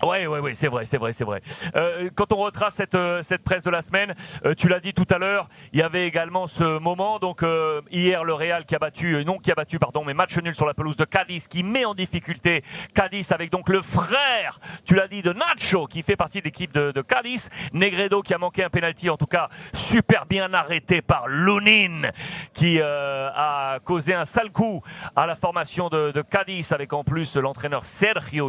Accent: French